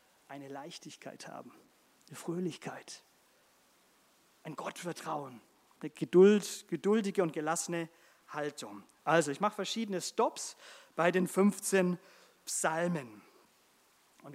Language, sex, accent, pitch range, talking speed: German, male, German, 165-220 Hz, 95 wpm